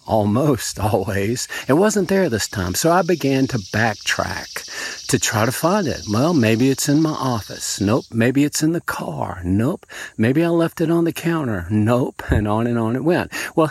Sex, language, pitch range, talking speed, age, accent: male, English, 105-155 Hz, 195 wpm, 50-69, American